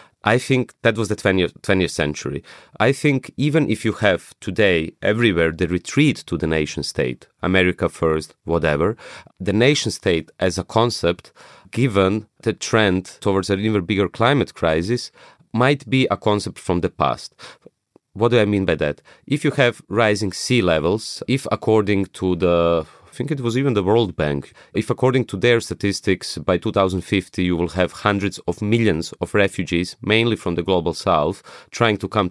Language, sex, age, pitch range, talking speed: English, male, 30-49, 90-115 Hz, 175 wpm